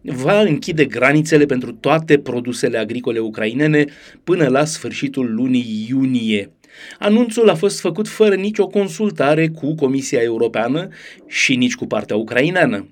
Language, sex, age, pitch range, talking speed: Romanian, male, 30-49, 120-175 Hz, 130 wpm